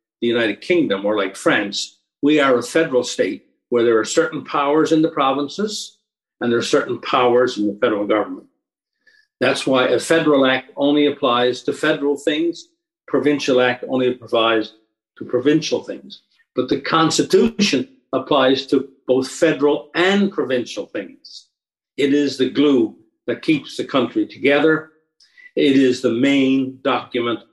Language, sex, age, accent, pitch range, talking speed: English, male, 50-69, American, 125-165 Hz, 150 wpm